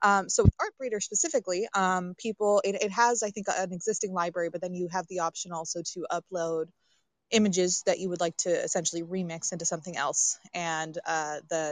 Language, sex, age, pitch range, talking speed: English, female, 20-39, 170-195 Hz, 190 wpm